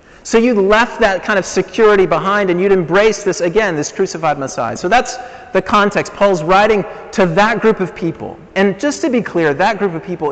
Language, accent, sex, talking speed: English, American, male, 210 wpm